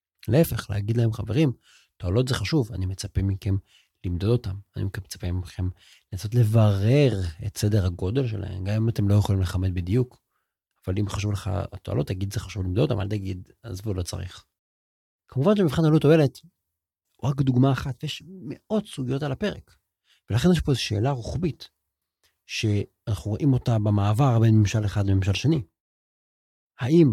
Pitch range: 95-130 Hz